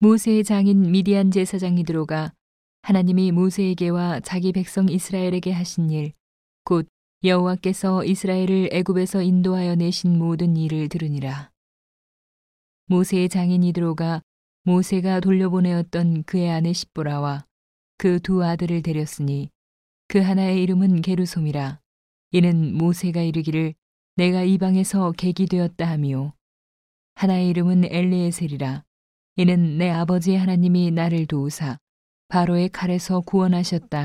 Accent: native